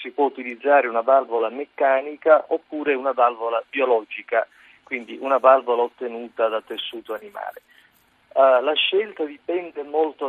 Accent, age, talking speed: native, 50-69, 120 wpm